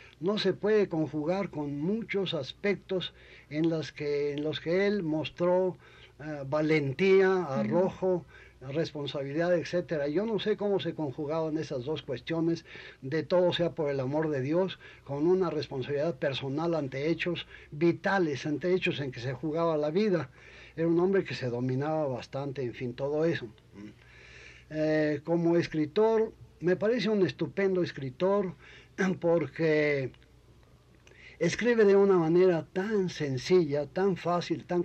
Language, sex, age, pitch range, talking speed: Spanish, male, 60-79, 145-180 Hz, 135 wpm